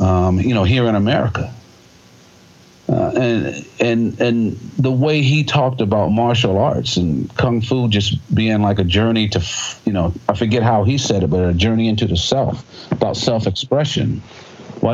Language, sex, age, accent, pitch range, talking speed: English, male, 50-69, American, 100-130 Hz, 175 wpm